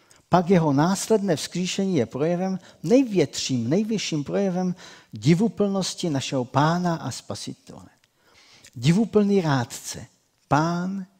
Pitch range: 135-195 Hz